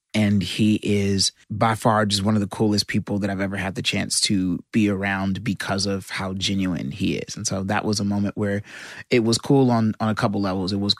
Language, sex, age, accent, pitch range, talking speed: English, male, 30-49, American, 100-115 Hz, 235 wpm